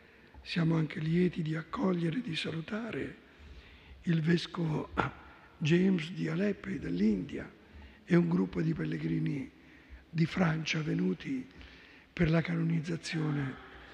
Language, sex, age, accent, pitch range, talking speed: Italian, male, 60-79, native, 160-200 Hz, 110 wpm